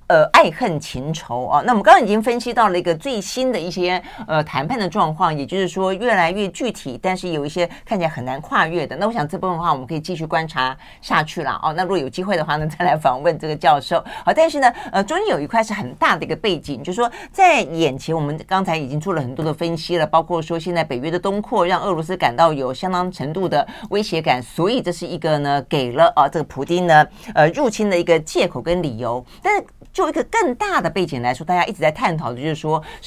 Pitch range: 155-220 Hz